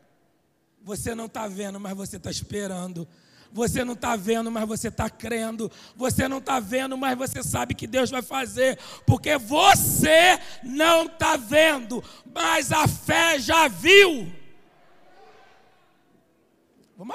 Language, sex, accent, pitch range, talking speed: Portuguese, male, Brazilian, 165-245 Hz, 135 wpm